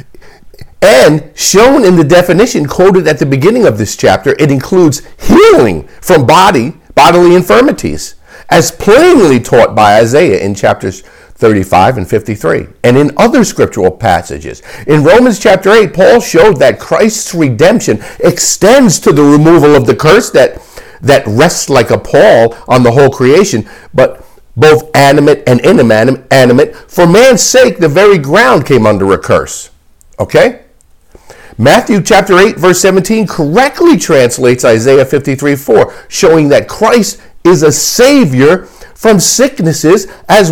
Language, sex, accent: English, male, American